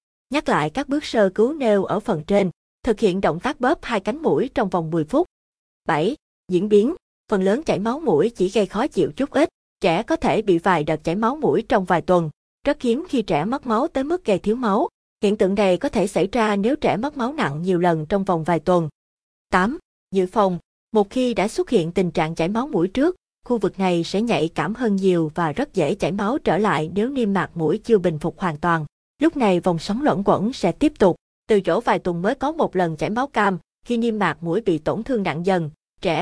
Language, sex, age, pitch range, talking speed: Vietnamese, female, 20-39, 175-235 Hz, 240 wpm